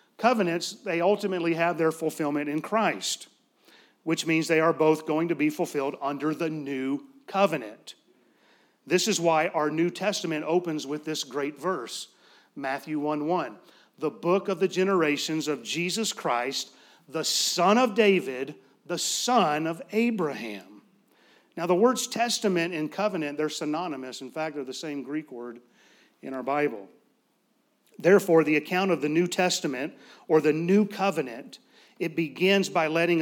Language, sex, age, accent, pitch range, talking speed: English, male, 40-59, American, 155-190 Hz, 150 wpm